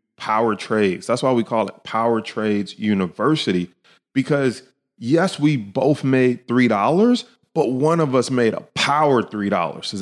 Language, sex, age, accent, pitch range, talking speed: English, male, 30-49, American, 105-150 Hz, 150 wpm